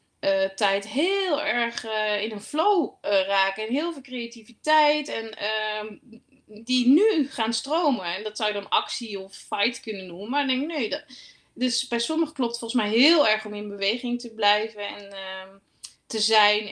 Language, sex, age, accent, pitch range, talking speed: Dutch, female, 20-39, Dutch, 200-265 Hz, 190 wpm